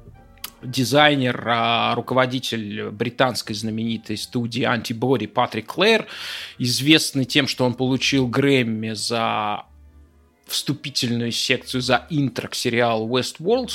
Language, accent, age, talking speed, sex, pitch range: Russian, native, 20-39, 95 wpm, male, 120-155 Hz